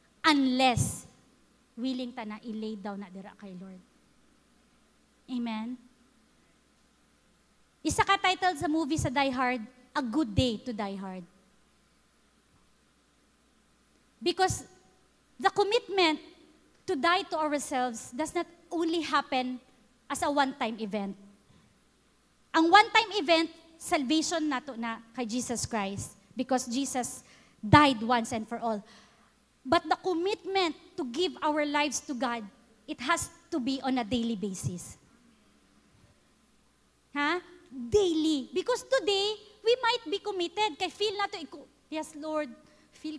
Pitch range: 245-345 Hz